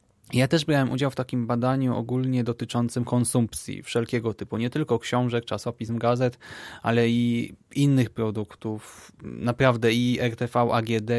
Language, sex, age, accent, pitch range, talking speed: Polish, male, 20-39, native, 115-135 Hz, 135 wpm